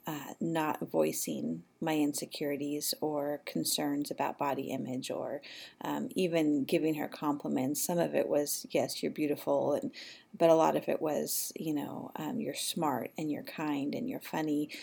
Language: English